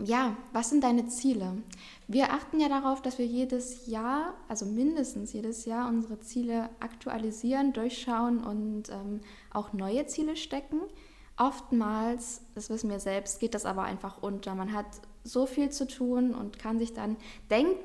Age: 10-29